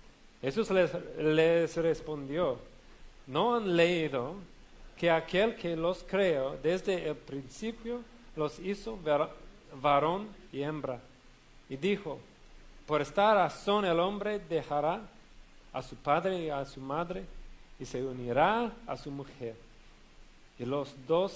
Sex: male